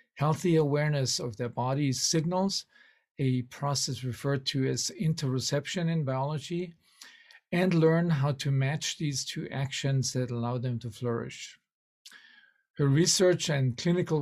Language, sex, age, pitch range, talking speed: English, male, 40-59, 135-165 Hz, 130 wpm